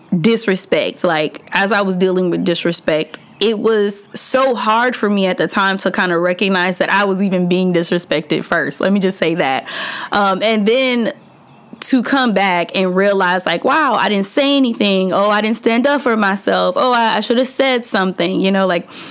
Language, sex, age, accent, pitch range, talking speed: English, female, 10-29, American, 185-235 Hz, 200 wpm